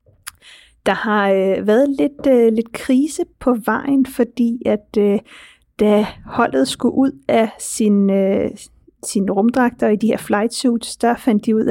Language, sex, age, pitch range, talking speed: Danish, female, 30-49, 205-240 Hz, 160 wpm